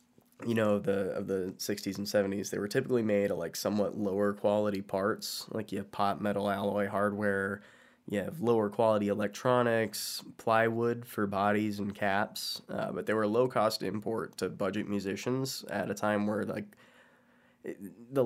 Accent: American